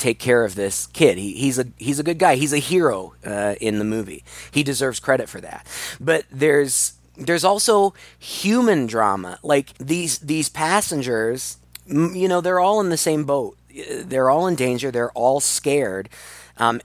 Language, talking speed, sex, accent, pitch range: English, 180 wpm, male, American, 115-155 Hz